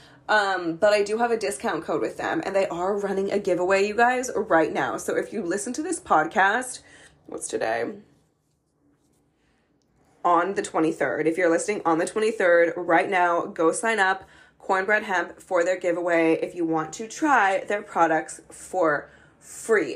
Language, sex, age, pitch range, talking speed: English, female, 20-39, 170-220 Hz, 170 wpm